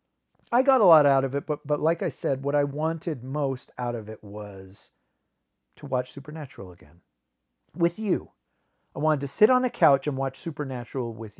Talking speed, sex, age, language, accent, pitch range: 195 wpm, male, 40-59, English, American, 130-175 Hz